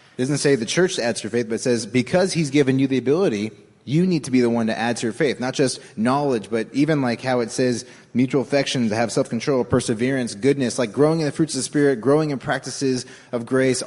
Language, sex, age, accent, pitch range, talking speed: English, male, 20-39, American, 115-145 Hz, 250 wpm